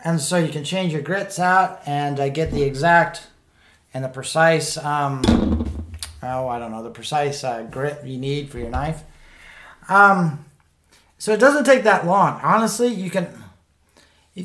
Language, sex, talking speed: English, male, 170 wpm